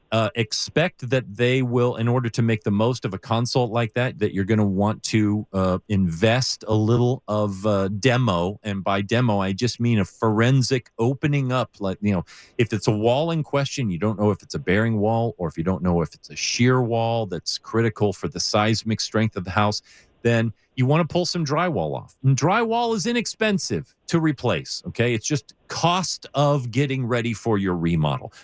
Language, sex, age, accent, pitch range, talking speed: English, male, 40-59, American, 100-125 Hz, 210 wpm